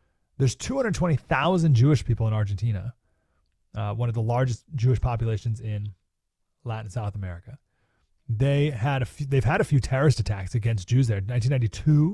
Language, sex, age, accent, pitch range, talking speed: English, male, 30-49, American, 105-140 Hz, 160 wpm